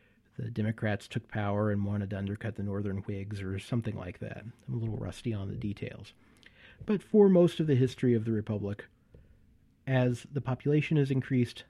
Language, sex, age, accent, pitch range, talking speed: English, male, 40-59, American, 105-140 Hz, 185 wpm